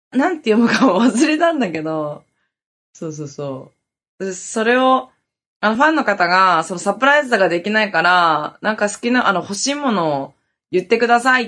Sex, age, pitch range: female, 20-39, 175-260 Hz